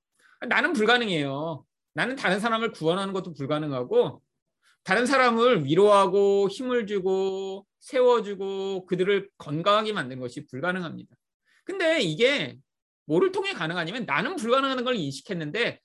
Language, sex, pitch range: Korean, male, 160-245 Hz